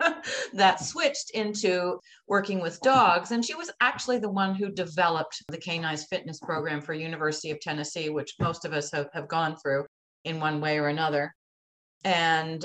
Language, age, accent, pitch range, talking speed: English, 40-59, American, 155-195 Hz, 170 wpm